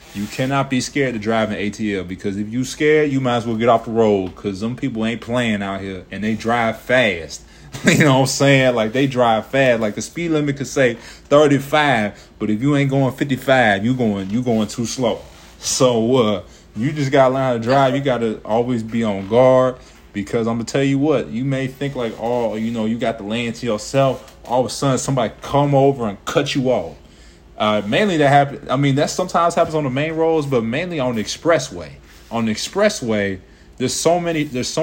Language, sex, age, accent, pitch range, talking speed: English, male, 20-39, American, 100-135 Hz, 225 wpm